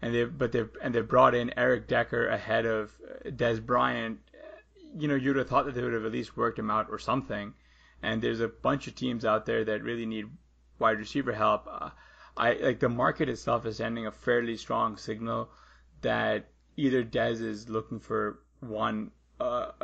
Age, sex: 20-39, male